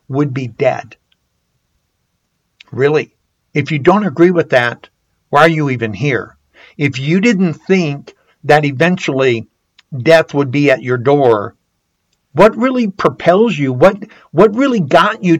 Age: 60-79